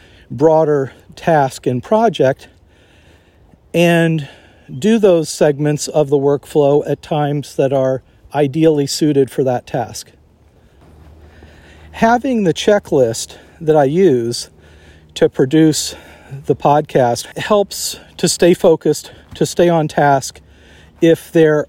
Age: 50-69